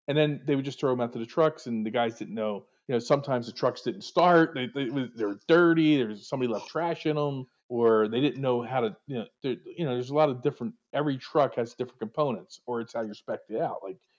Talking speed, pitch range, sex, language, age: 255 wpm, 110-140 Hz, male, English, 40-59